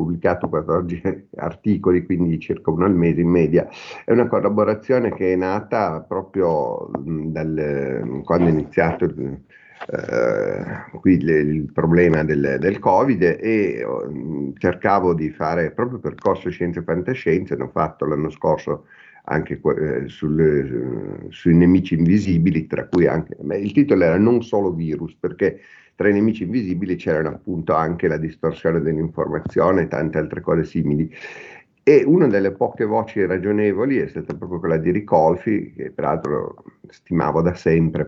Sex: male